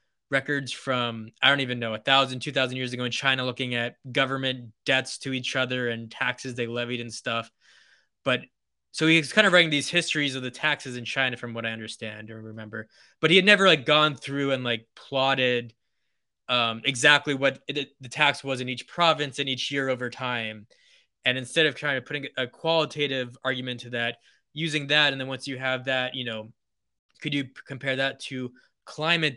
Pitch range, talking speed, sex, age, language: 120-140 Hz, 205 wpm, male, 20-39, English